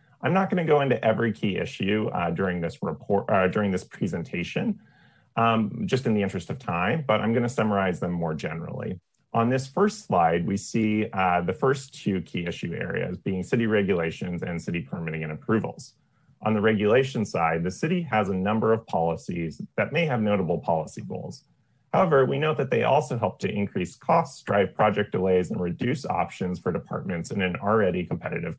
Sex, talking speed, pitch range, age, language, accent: male, 190 wpm, 95-130 Hz, 30-49, English, American